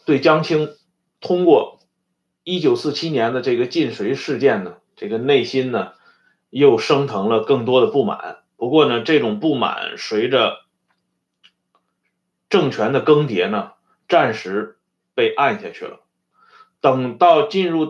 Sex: male